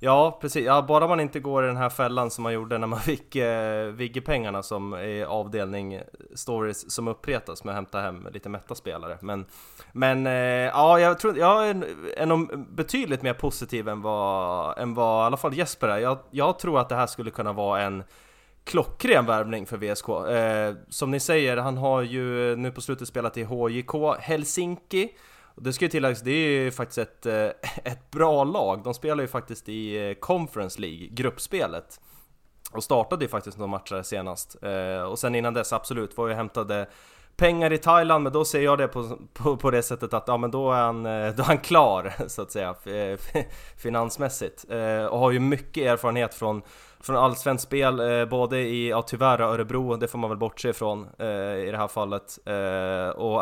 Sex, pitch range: male, 110-135 Hz